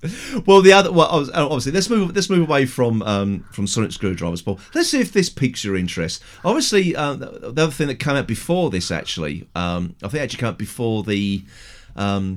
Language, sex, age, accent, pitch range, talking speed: English, male, 40-59, British, 95-155 Hz, 215 wpm